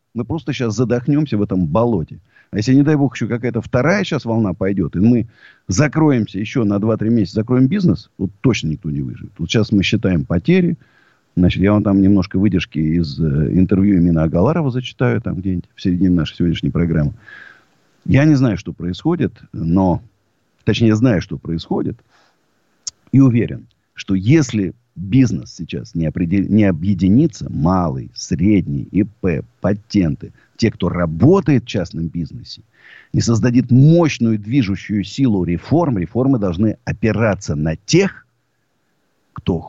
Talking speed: 150 wpm